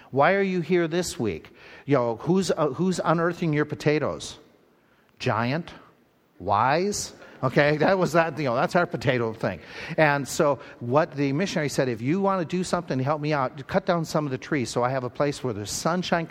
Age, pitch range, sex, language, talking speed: 50-69, 125-160 Hz, male, English, 205 wpm